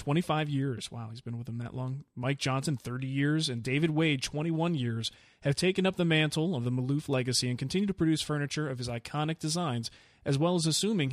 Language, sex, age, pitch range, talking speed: English, male, 30-49, 125-155 Hz, 215 wpm